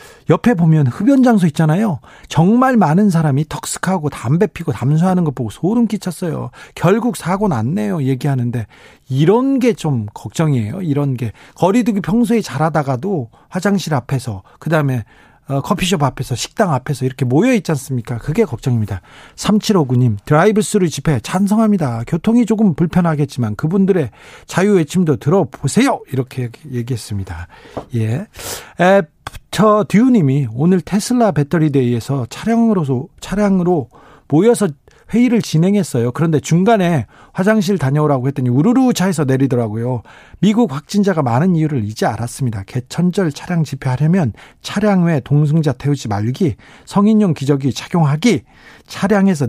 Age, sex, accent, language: 40-59, male, native, Korean